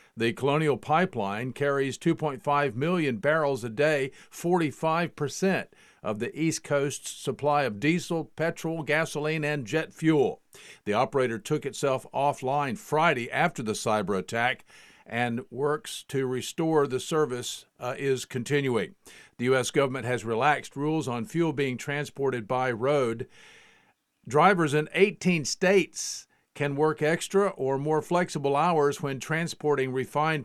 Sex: male